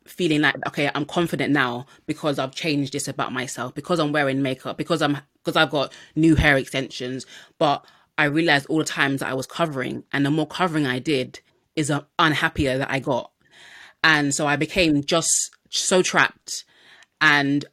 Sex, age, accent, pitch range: female, 20-39, British, 140-165 Hz